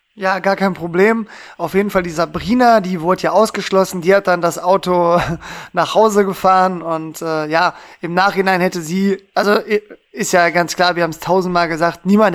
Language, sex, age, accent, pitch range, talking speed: German, male, 20-39, German, 170-195 Hz, 190 wpm